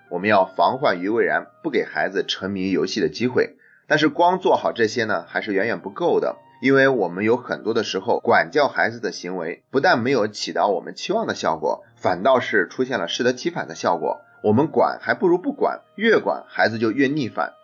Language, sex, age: Chinese, male, 30-49